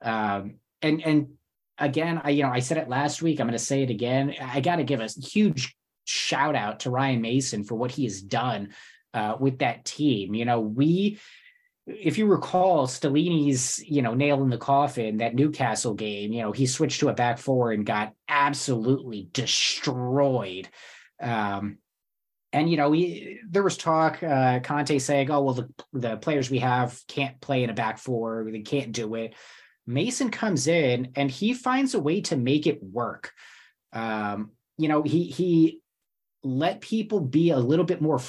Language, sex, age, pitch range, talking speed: English, male, 20-39, 125-170 Hz, 185 wpm